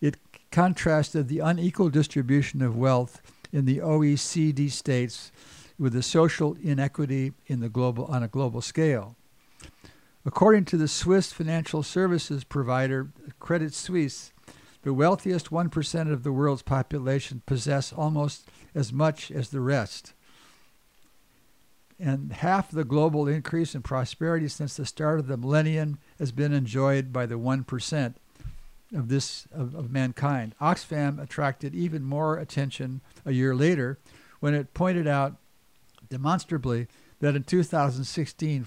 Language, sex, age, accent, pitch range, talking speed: English, male, 60-79, American, 130-160 Hz, 125 wpm